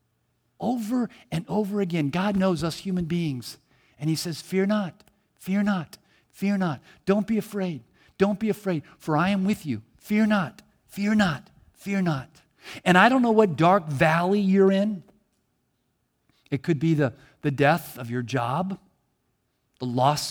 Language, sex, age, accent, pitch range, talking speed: English, male, 50-69, American, 140-195 Hz, 165 wpm